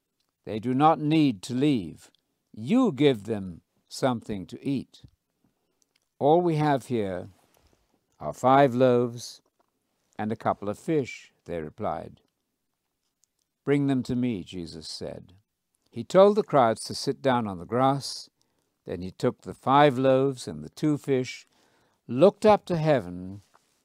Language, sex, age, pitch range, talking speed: English, male, 60-79, 110-145 Hz, 140 wpm